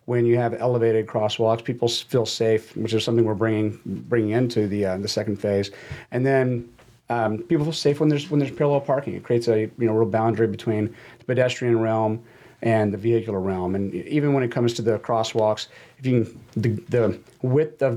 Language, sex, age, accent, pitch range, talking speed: English, male, 40-59, American, 110-130 Hz, 205 wpm